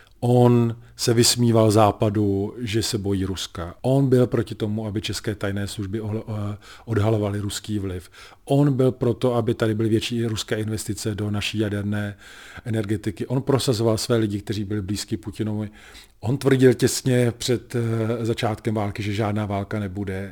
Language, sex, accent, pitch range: Czech, male, native, 105-120 Hz